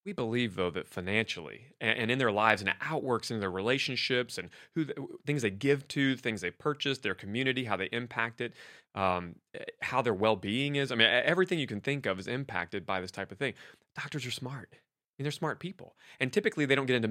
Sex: male